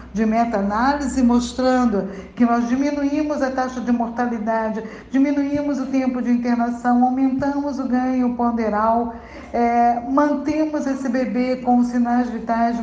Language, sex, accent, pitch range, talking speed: Portuguese, female, Brazilian, 230-280 Hz, 120 wpm